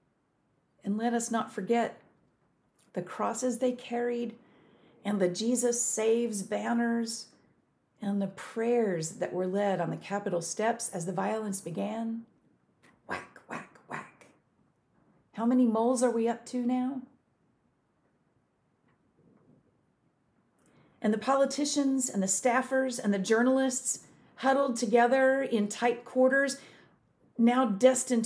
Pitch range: 205-250 Hz